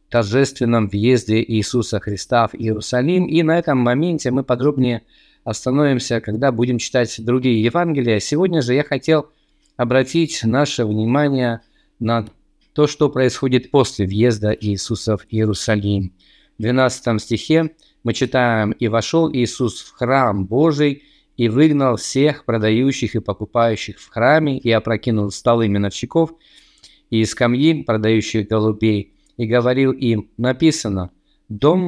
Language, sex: Russian, male